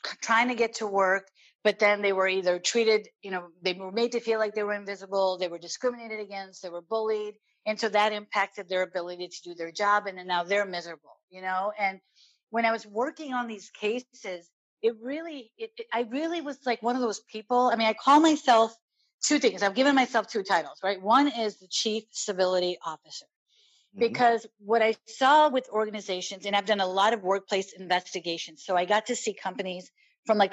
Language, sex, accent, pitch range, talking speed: English, female, American, 195-250 Hz, 205 wpm